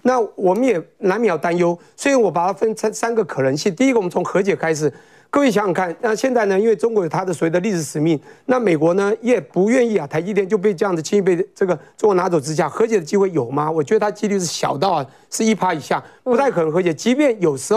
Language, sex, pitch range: Chinese, male, 165-225 Hz